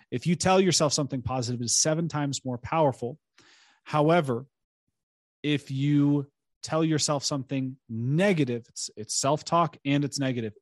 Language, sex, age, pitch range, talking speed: English, male, 30-49, 130-165 Hz, 135 wpm